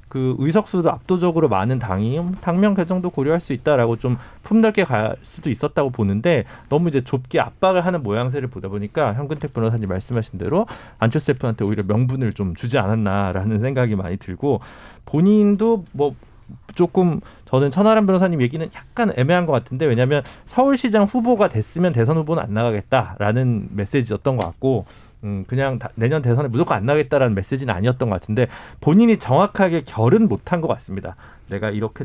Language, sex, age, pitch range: Korean, male, 40-59, 110-165 Hz